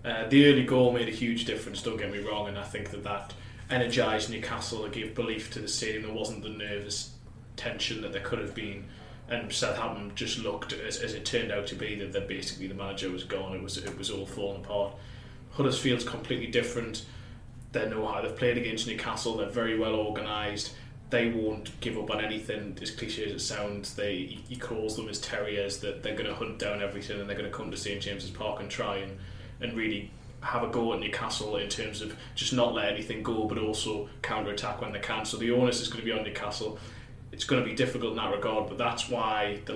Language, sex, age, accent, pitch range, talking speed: English, male, 20-39, British, 105-120 Hz, 225 wpm